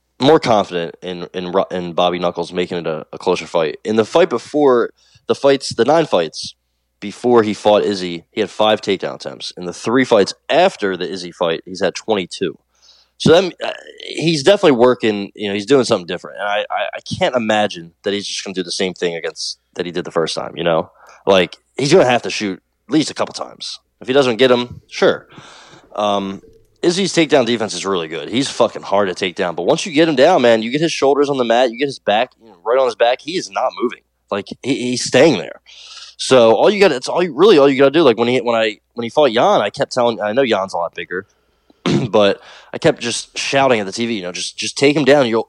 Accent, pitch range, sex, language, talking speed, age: American, 95-125 Hz, male, English, 240 wpm, 20-39